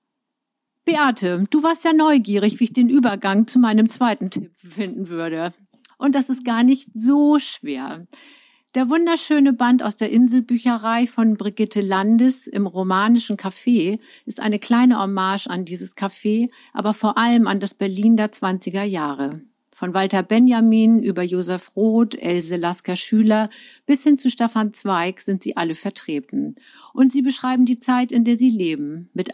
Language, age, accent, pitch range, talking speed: German, 50-69, German, 195-255 Hz, 160 wpm